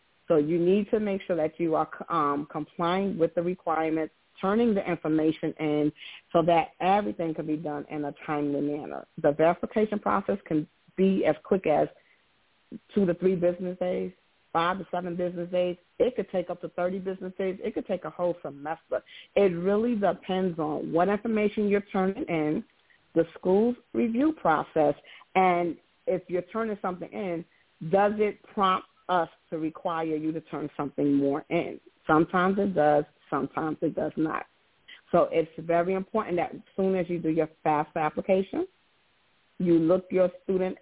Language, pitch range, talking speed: English, 160-190 Hz, 170 wpm